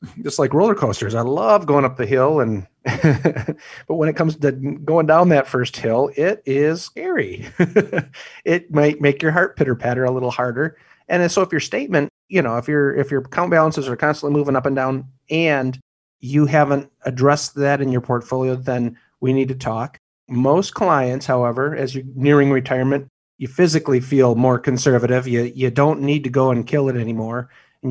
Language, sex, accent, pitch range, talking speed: English, male, American, 125-150 Hz, 190 wpm